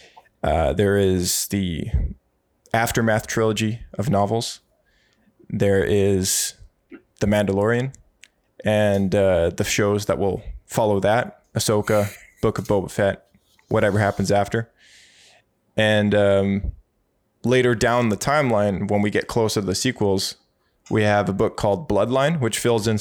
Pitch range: 100-115 Hz